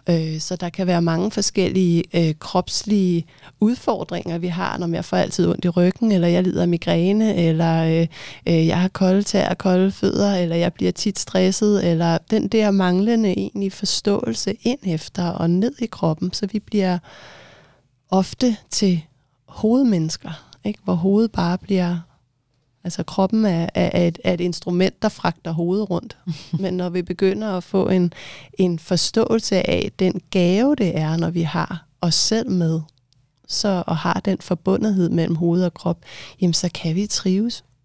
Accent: native